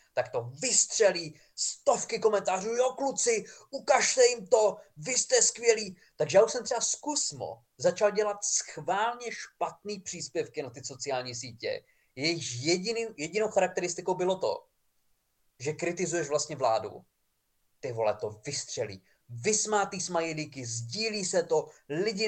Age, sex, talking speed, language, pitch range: 20-39, male, 130 wpm, Czech, 145-220 Hz